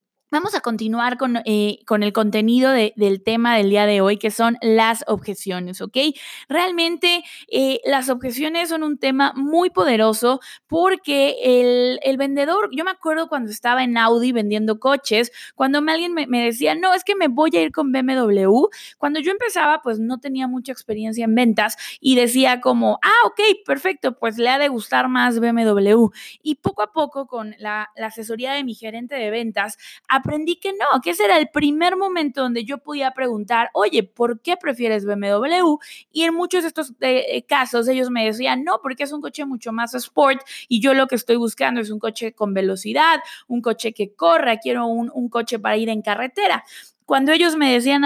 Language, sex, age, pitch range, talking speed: Spanish, female, 20-39, 225-290 Hz, 195 wpm